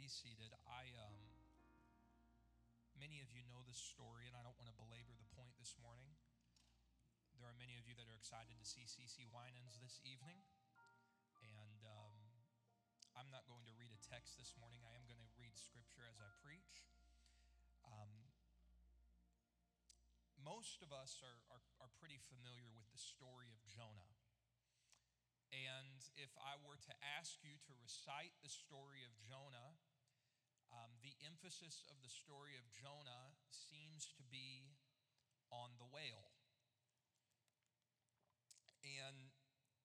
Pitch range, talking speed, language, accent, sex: 115-135 Hz, 145 wpm, English, American, male